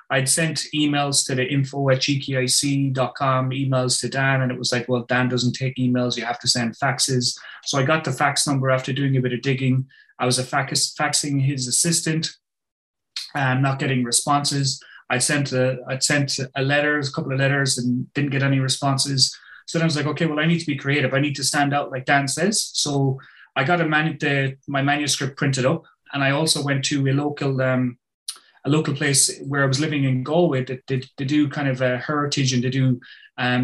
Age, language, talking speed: 20-39, English, 205 wpm